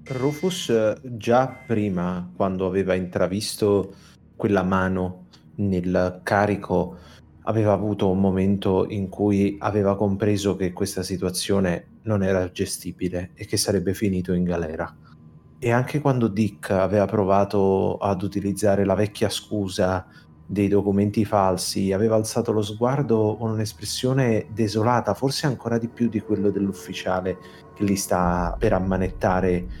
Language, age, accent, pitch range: Italian, 30-49, native, 95-115 Hz